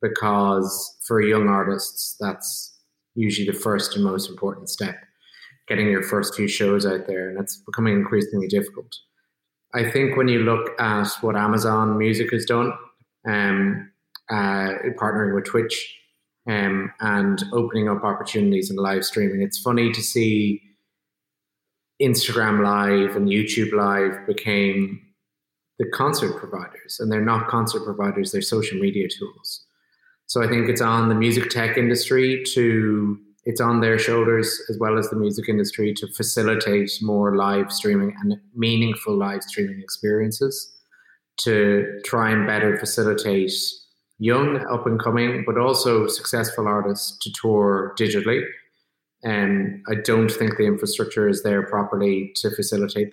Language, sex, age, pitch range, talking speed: English, male, 30-49, 100-120 Hz, 140 wpm